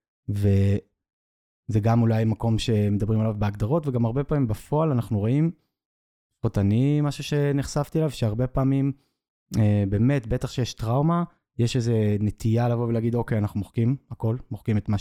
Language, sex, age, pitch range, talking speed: Hebrew, male, 20-39, 105-125 Hz, 140 wpm